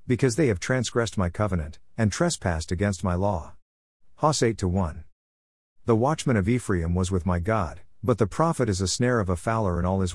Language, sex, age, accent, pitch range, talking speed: English, male, 50-69, American, 90-115 Hz, 195 wpm